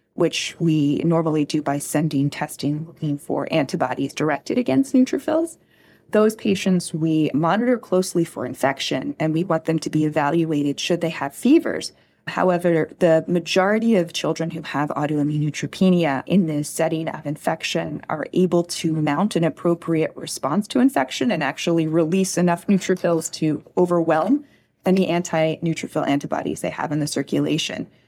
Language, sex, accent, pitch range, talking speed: English, female, American, 150-180 Hz, 145 wpm